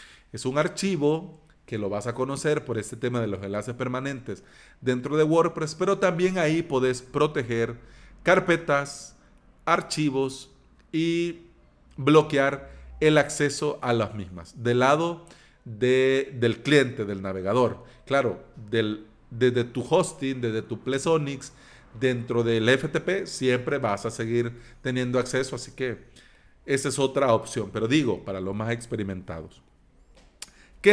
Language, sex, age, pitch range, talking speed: Spanish, male, 40-59, 115-155 Hz, 135 wpm